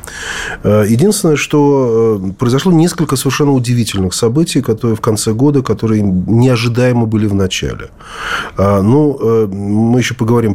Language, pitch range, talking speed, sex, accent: Russian, 95-130 Hz, 115 wpm, male, native